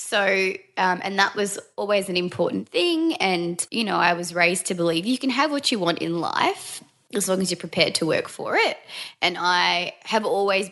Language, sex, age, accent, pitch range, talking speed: English, female, 20-39, Australian, 160-195 Hz, 215 wpm